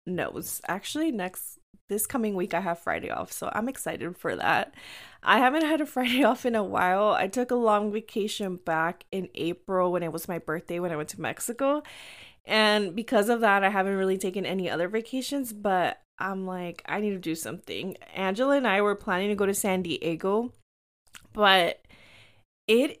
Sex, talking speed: female, 190 wpm